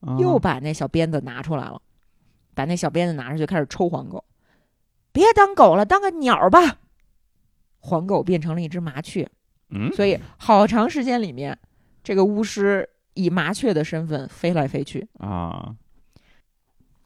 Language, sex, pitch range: Chinese, female, 150-235 Hz